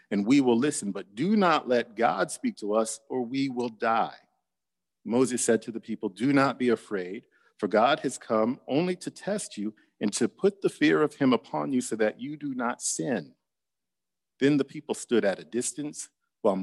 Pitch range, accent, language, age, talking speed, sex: 105-150 Hz, American, English, 50-69, 200 wpm, male